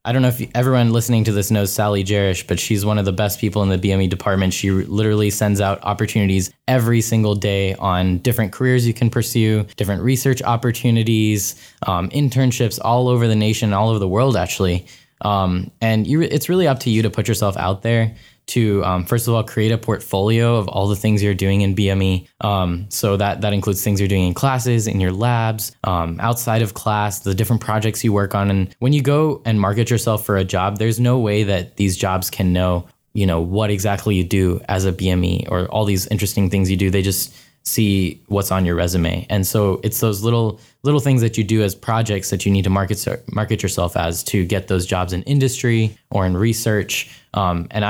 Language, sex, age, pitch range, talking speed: English, male, 10-29, 95-115 Hz, 215 wpm